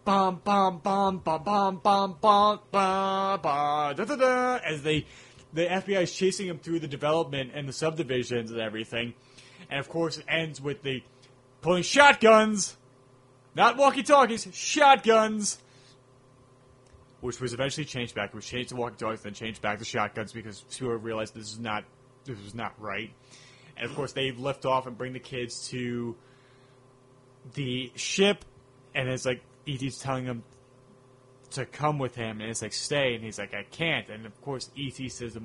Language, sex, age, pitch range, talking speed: English, male, 30-49, 120-145 Hz, 150 wpm